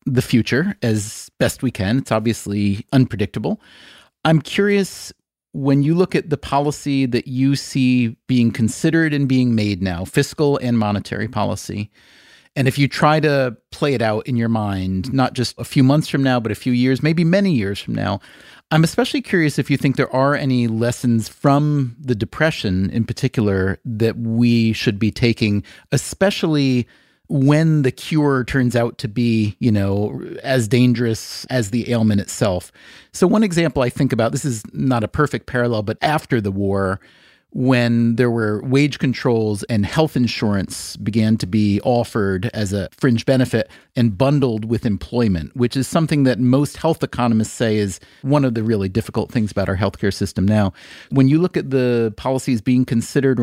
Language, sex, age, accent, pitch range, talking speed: English, male, 30-49, American, 110-140 Hz, 175 wpm